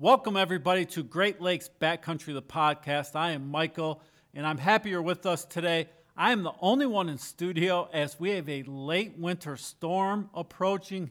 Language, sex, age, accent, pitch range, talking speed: English, male, 40-59, American, 155-185 Hz, 180 wpm